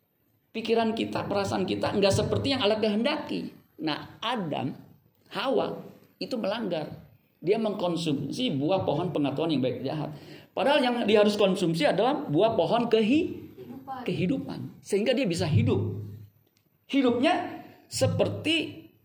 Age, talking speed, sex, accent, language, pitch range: 50-69, 120 wpm, male, native, Indonesian, 145-215 Hz